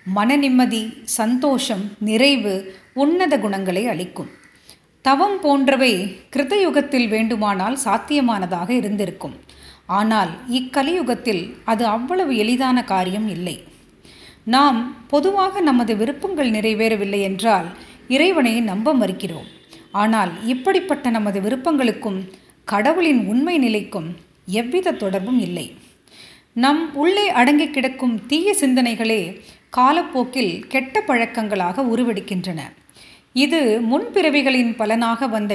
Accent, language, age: native, Tamil, 30-49